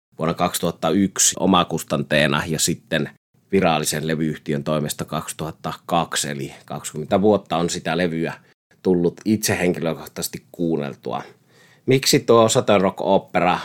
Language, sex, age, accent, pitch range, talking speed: Finnish, male, 30-49, native, 80-95 Hz, 95 wpm